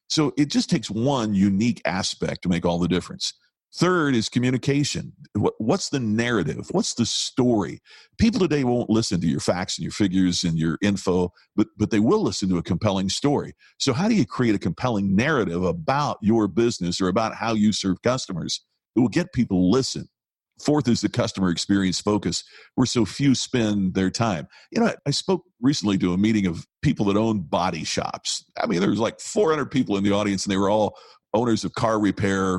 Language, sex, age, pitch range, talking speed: English, male, 50-69, 95-120 Hz, 205 wpm